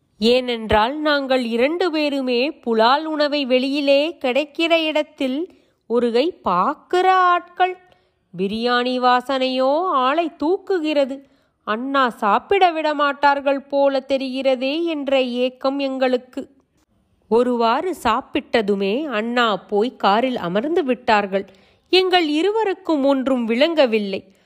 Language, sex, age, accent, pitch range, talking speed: Tamil, female, 30-49, native, 240-305 Hz, 90 wpm